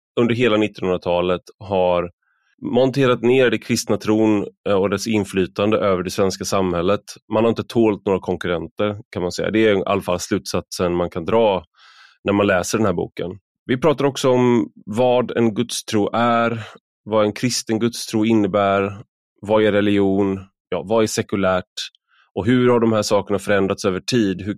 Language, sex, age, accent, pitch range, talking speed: Swedish, male, 20-39, native, 95-115 Hz, 170 wpm